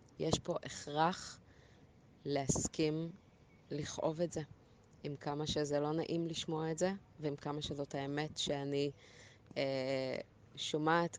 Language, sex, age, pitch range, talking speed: Hebrew, female, 20-39, 140-180 Hz, 120 wpm